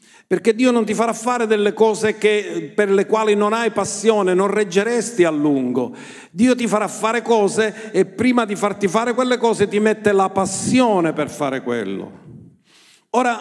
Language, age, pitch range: Italian, 50-69, 185-230 Hz